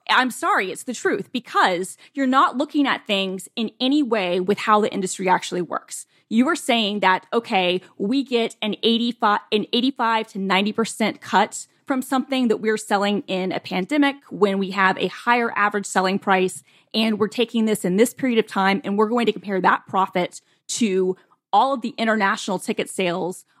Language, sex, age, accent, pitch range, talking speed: English, female, 20-39, American, 195-240 Hz, 185 wpm